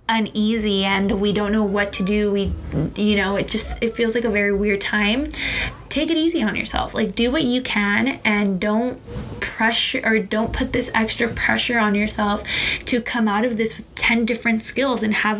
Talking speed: 205 wpm